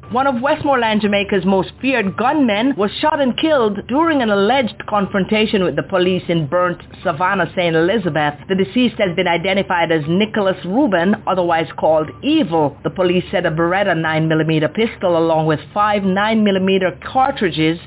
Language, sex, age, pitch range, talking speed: English, female, 50-69, 175-230 Hz, 155 wpm